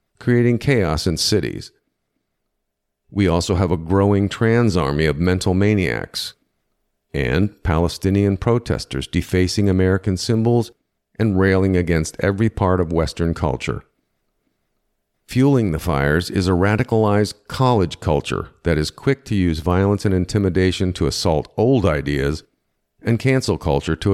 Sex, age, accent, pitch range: male, 50-69, American, 85-110 Hz